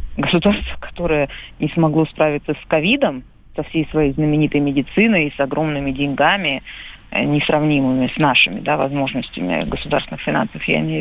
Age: 30-49